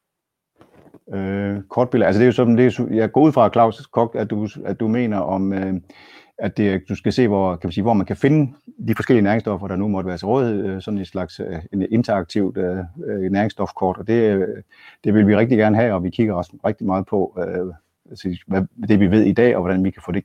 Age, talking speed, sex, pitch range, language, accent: 50-69, 245 wpm, male, 95-120 Hz, Danish, native